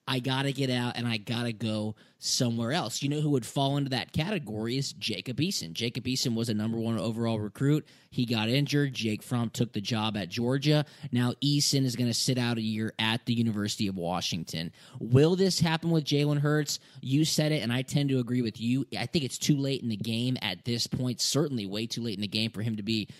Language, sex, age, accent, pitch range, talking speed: English, male, 20-39, American, 110-145 Hz, 240 wpm